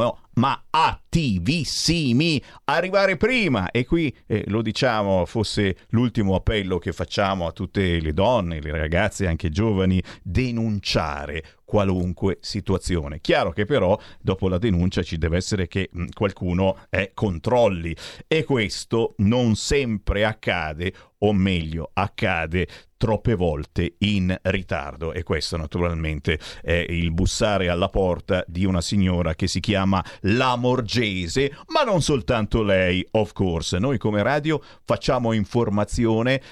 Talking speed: 125 wpm